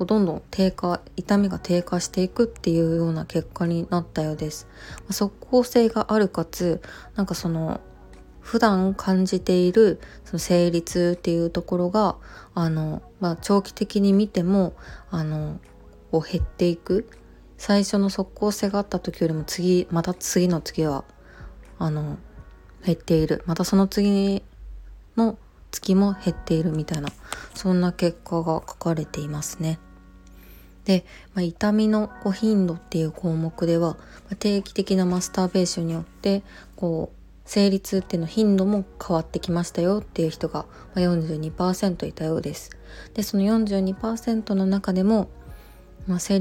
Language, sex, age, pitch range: Japanese, female, 20-39, 165-200 Hz